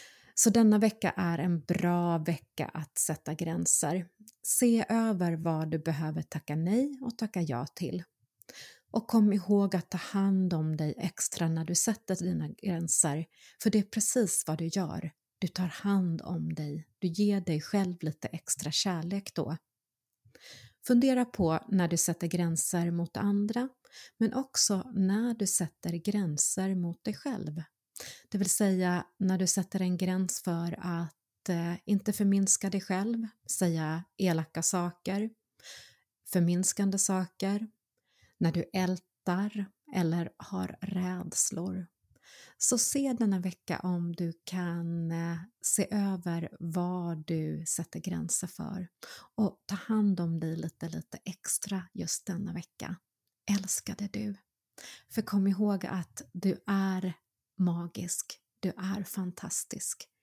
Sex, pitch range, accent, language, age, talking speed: female, 170-200 Hz, native, Swedish, 30-49, 135 wpm